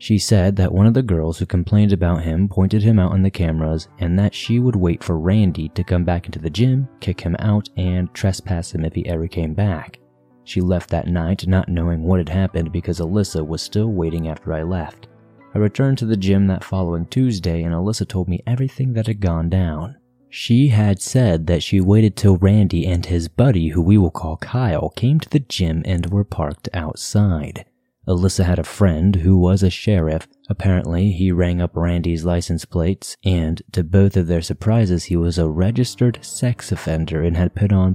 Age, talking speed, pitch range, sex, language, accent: 30-49, 205 wpm, 85-100 Hz, male, English, American